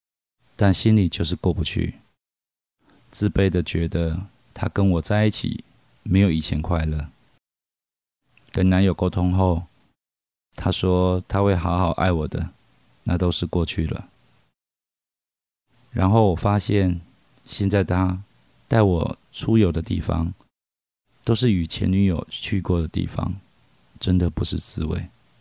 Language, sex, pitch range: Chinese, male, 85-100 Hz